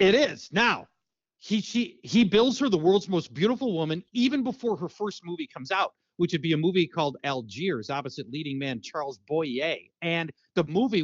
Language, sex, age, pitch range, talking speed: English, male, 40-59, 165-230 Hz, 190 wpm